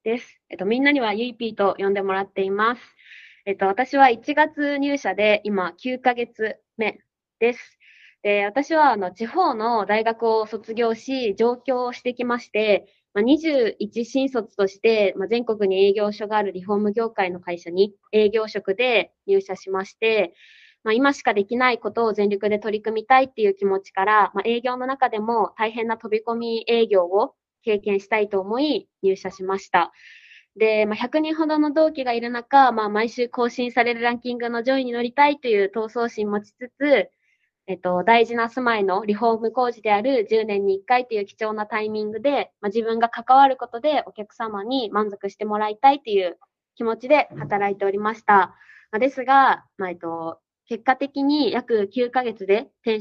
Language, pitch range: Japanese, 205-250 Hz